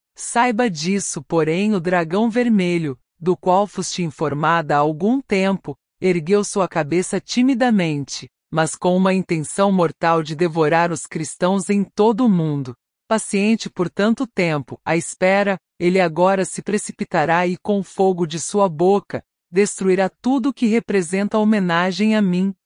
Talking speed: 145 wpm